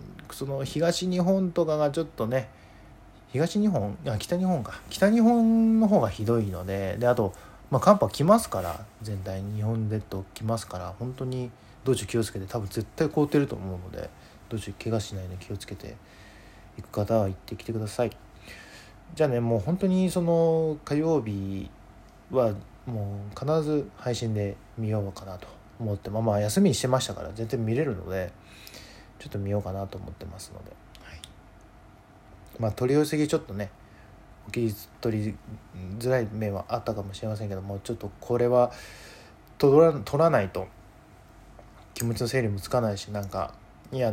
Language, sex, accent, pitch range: Japanese, male, native, 100-125 Hz